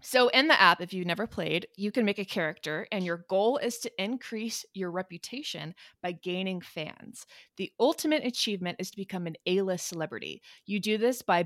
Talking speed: 195 wpm